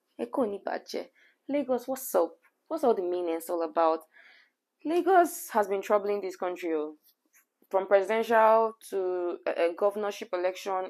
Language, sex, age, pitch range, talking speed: English, female, 20-39, 185-260 Hz, 115 wpm